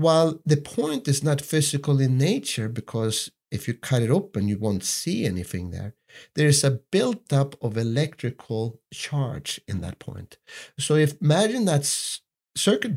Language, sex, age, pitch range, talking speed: English, male, 50-69, 110-150 Hz, 155 wpm